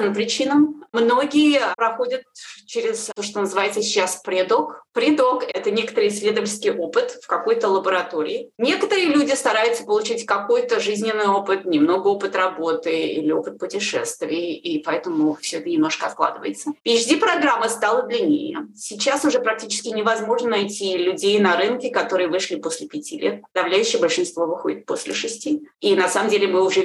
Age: 20-39